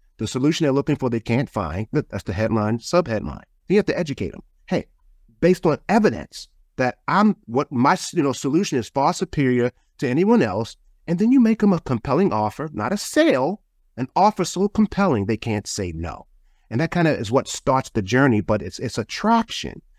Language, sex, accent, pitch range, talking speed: English, male, American, 125-195 Hz, 200 wpm